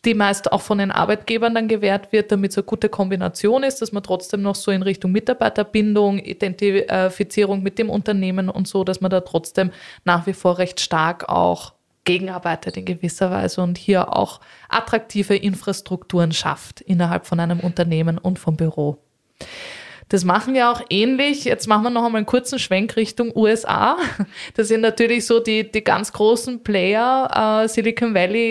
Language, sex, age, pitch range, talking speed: German, female, 20-39, 180-225 Hz, 175 wpm